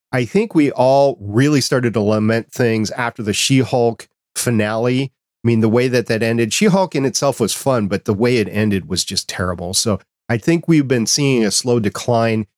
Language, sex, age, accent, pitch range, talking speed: English, male, 40-59, American, 105-125 Hz, 210 wpm